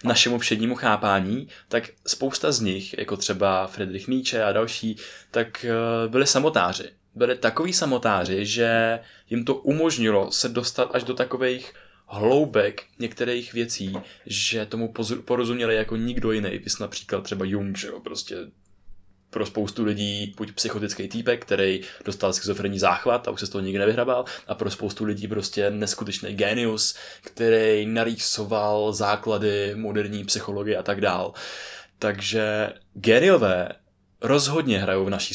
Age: 20-39